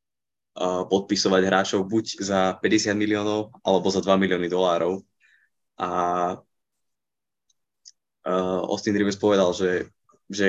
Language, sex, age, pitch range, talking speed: Slovak, male, 20-39, 95-105 Hz, 95 wpm